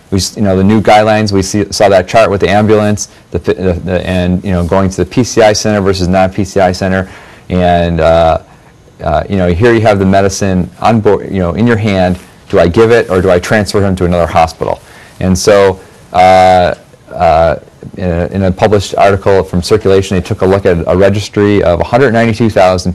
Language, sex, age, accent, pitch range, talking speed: English, male, 40-59, American, 90-105 Hz, 205 wpm